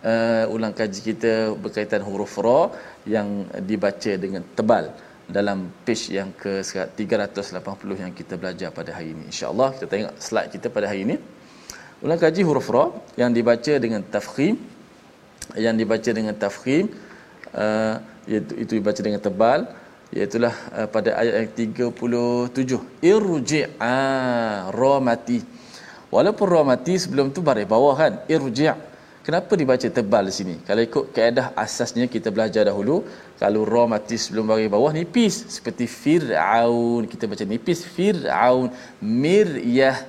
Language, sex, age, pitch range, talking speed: Malayalam, male, 20-39, 105-135 Hz, 140 wpm